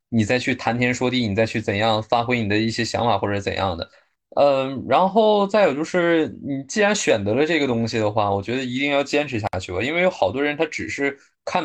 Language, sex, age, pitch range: Chinese, male, 20-39, 115-155 Hz